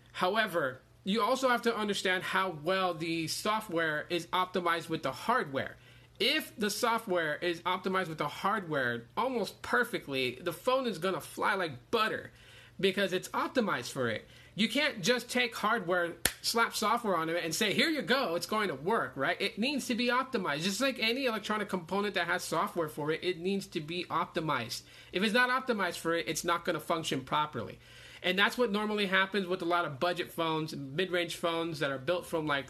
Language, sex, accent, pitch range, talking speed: English, male, American, 160-205 Hz, 195 wpm